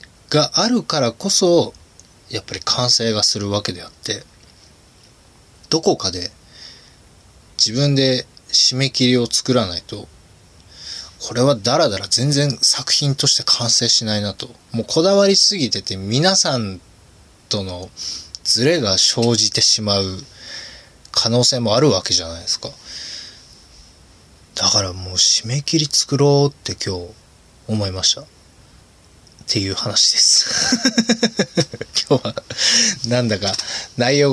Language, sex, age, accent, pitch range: Japanese, male, 20-39, native, 95-140 Hz